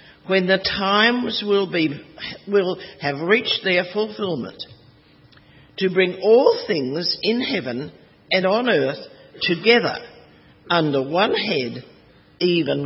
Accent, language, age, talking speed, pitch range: Australian, English, 50-69, 105 wpm, 150-215 Hz